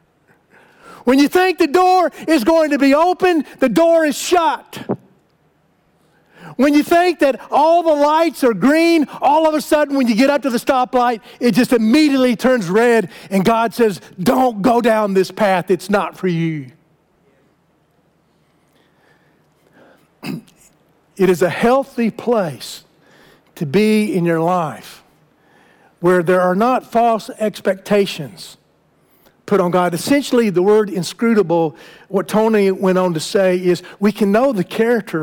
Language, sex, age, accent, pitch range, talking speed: English, male, 50-69, American, 185-255 Hz, 145 wpm